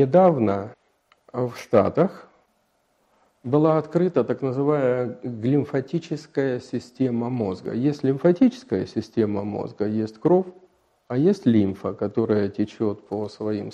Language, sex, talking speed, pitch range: Russian, male, 100 wpm, 105-145 Hz